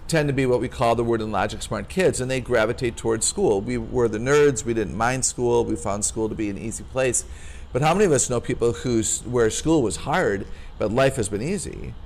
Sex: male